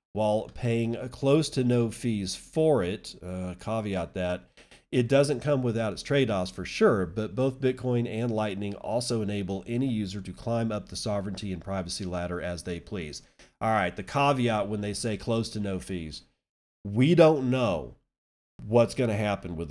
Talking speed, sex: 175 wpm, male